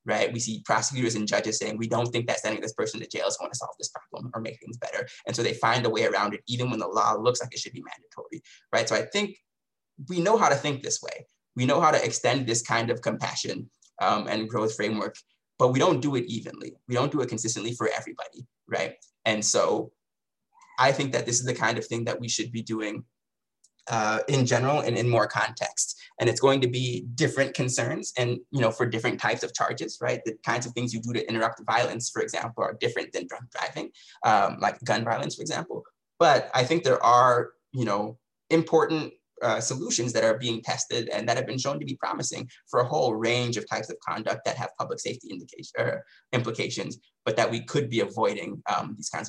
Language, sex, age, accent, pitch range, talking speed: English, male, 20-39, American, 115-135 Hz, 230 wpm